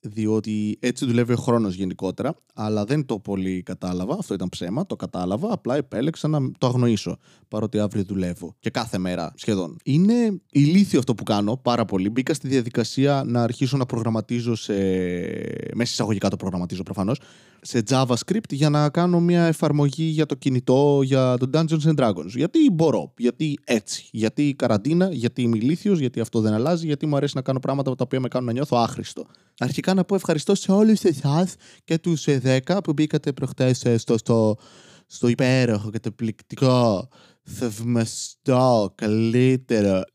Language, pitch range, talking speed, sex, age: Greek, 105-145 Hz, 165 wpm, male, 20-39